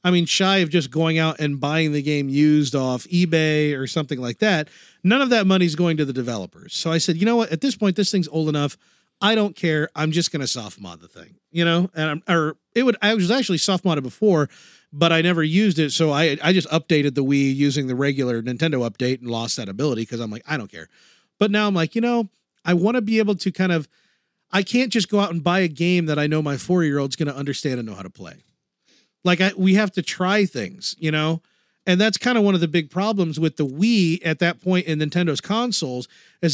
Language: English